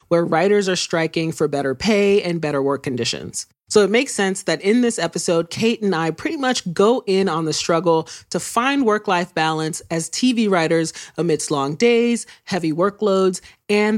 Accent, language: American, English